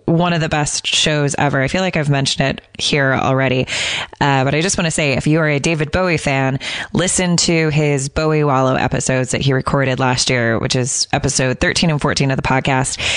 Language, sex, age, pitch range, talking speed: English, female, 20-39, 135-170 Hz, 220 wpm